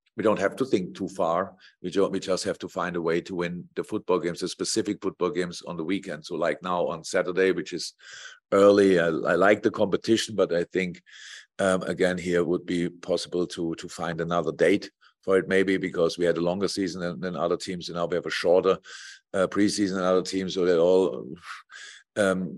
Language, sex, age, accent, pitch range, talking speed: English, male, 50-69, German, 85-100 Hz, 220 wpm